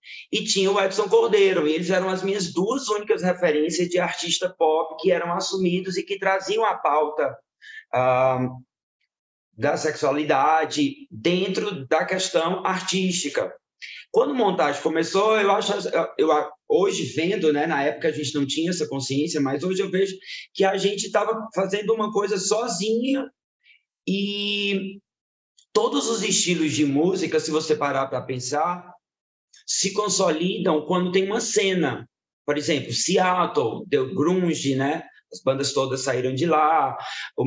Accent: Brazilian